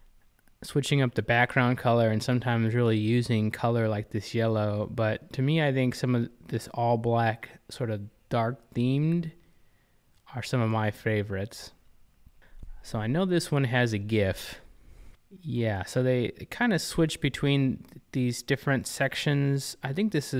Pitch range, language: 110-130 Hz, English